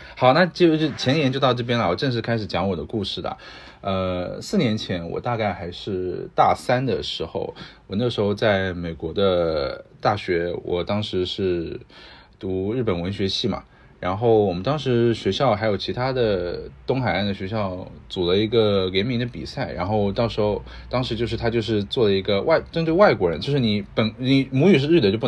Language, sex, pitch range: Chinese, male, 95-130 Hz